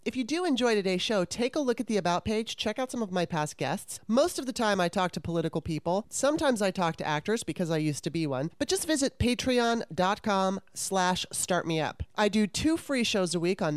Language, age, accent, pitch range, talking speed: English, 30-49, American, 180-235 Hz, 235 wpm